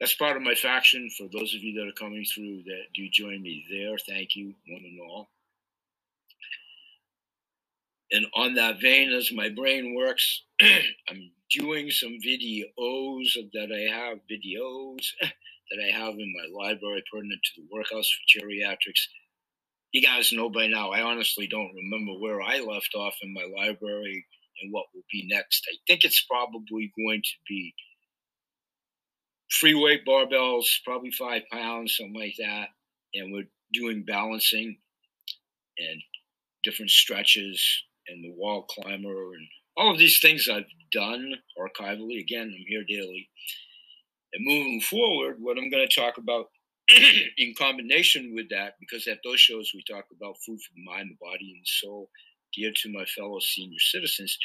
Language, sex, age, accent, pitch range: Chinese, male, 60-79, American, 100-120 Hz